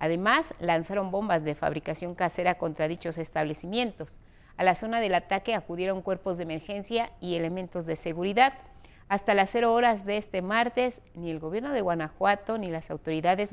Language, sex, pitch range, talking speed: Spanish, female, 175-220 Hz, 165 wpm